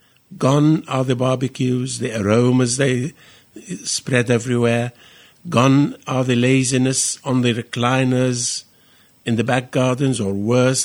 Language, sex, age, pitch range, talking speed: English, male, 50-69, 110-145 Hz, 120 wpm